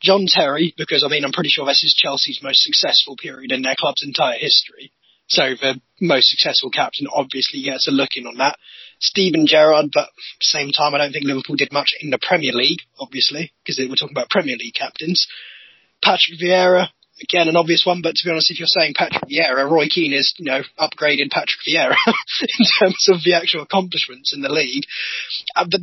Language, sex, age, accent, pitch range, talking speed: English, male, 20-39, British, 140-185 Hz, 210 wpm